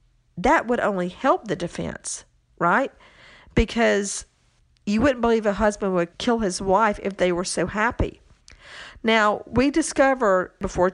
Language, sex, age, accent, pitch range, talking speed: English, female, 50-69, American, 175-225 Hz, 145 wpm